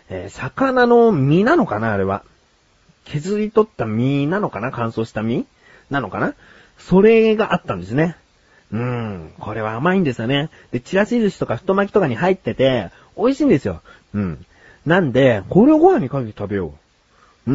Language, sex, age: Japanese, male, 40-59